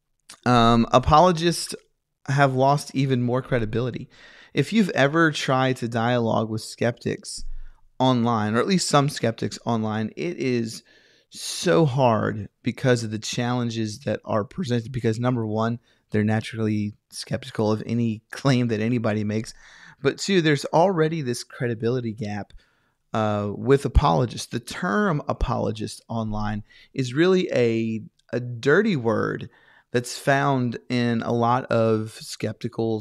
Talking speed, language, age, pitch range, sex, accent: 130 wpm, English, 30-49, 110-135 Hz, male, American